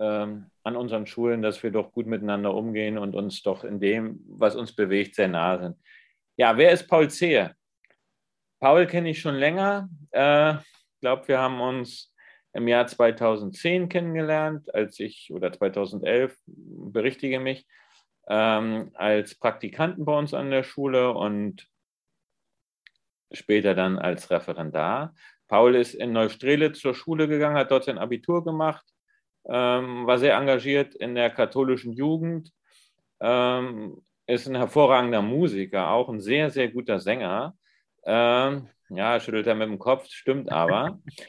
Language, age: German, 40-59